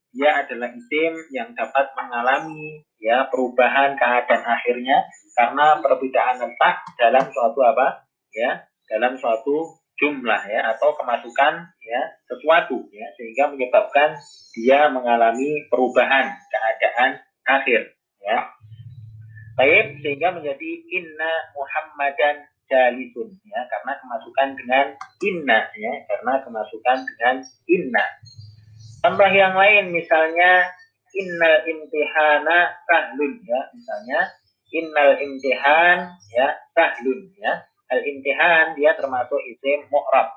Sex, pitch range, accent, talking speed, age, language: male, 125-165 Hz, native, 105 wpm, 30-49, Indonesian